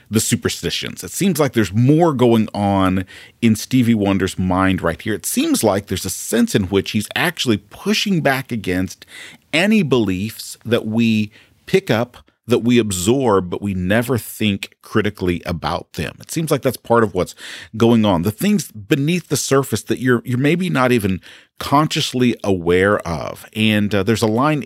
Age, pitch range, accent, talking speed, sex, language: 40-59, 100-130 Hz, American, 175 wpm, male, English